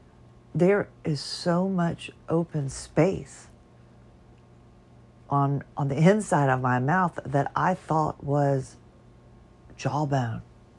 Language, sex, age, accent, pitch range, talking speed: English, female, 50-69, American, 120-150 Hz, 100 wpm